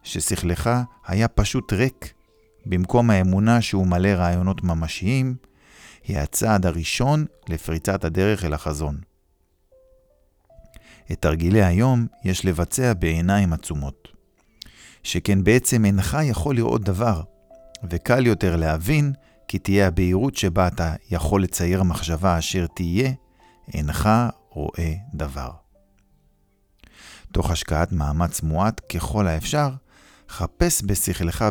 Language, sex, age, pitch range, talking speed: Hebrew, male, 50-69, 80-110 Hz, 105 wpm